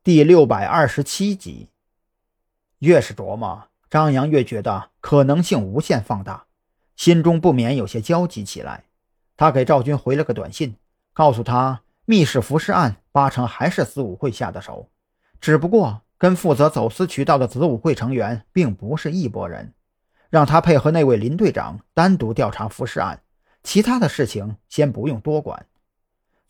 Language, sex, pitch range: Chinese, male, 115-160 Hz